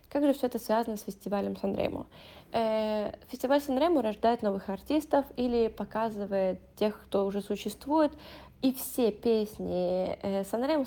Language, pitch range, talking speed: Italian, 205-250 Hz, 125 wpm